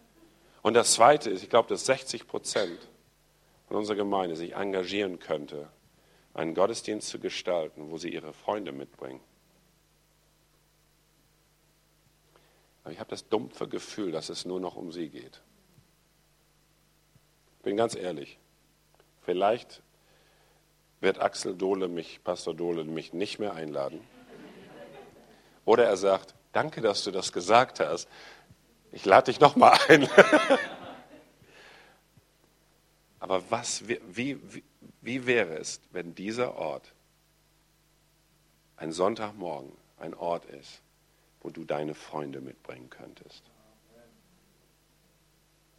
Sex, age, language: male, 50-69, German